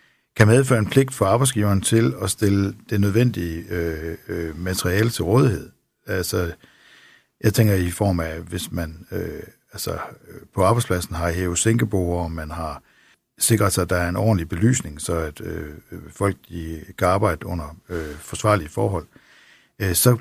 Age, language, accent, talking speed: 60-79, Danish, native, 165 wpm